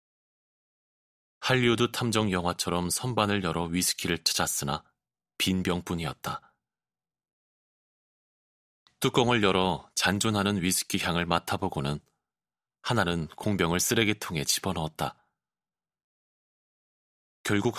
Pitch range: 85-105 Hz